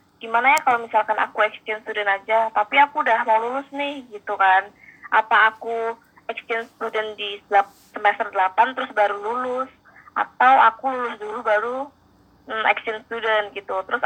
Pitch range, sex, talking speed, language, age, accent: 215-255 Hz, female, 155 wpm, Indonesian, 20-39, native